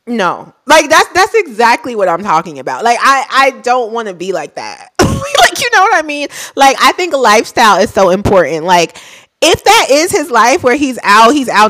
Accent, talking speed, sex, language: American, 215 wpm, female, English